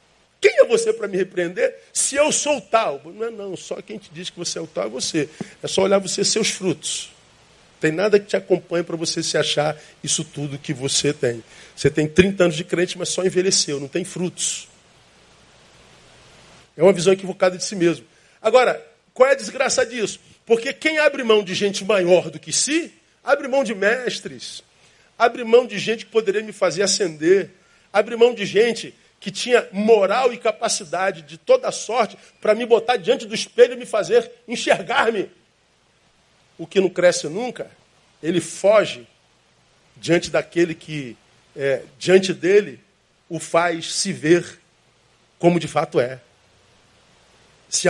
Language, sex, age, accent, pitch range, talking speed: Portuguese, male, 50-69, Brazilian, 165-230 Hz, 170 wpm